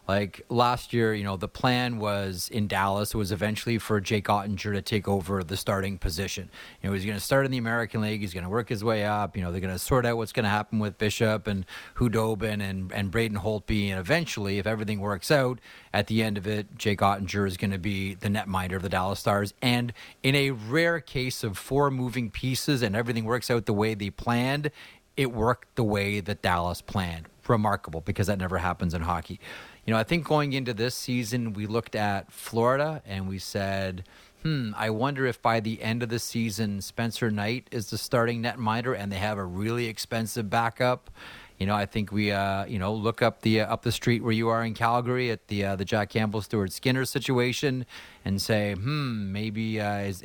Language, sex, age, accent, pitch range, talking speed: English, male, 30-49, American, 100-120 Hz, 220 wpm